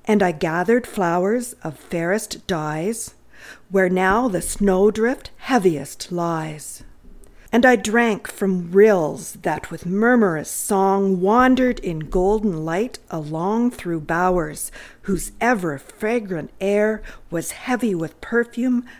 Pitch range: 170-225 Hz